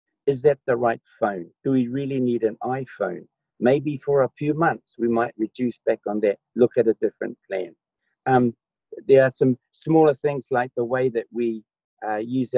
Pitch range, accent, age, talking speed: 115-145 Hz, British, 50-69, 190 wpm